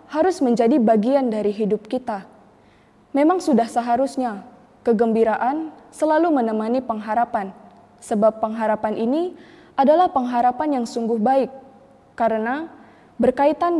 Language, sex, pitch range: Indonesian, female, 215-265 Hz